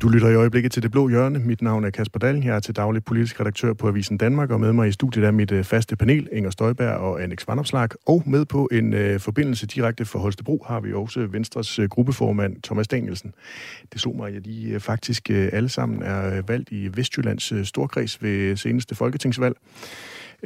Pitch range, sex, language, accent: 105-130 Hz, male, Danish, native